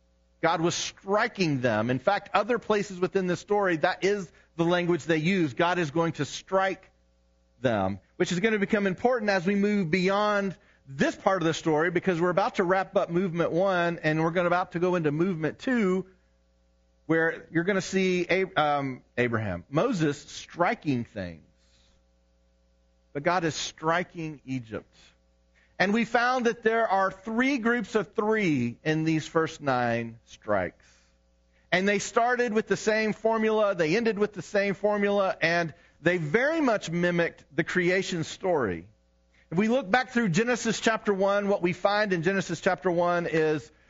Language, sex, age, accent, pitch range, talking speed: English, male, 40-59, American, 130-200 Hz, 165 wpm